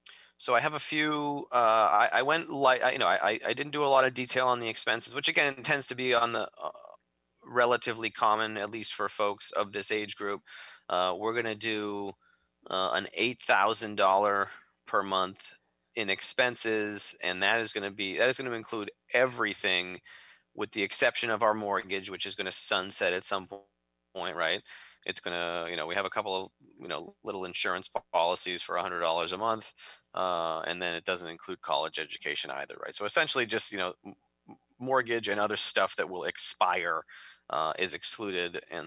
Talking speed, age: 200 wpm, 30-49